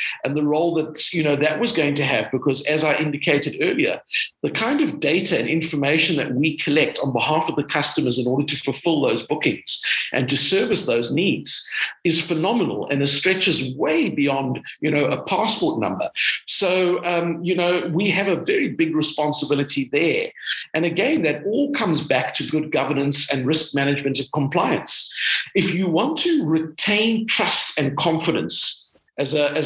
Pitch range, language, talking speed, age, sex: 140-185 Hz, English, 175 wpm, 50-69, male